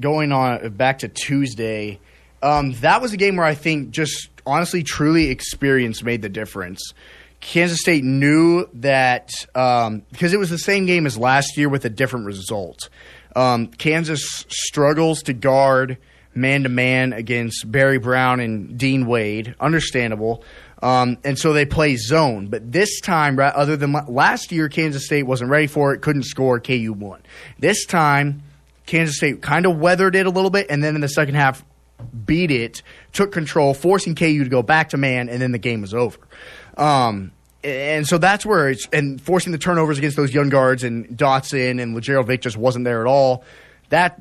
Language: English